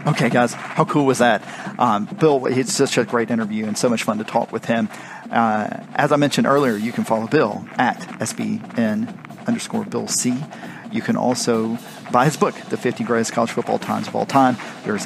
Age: 40-59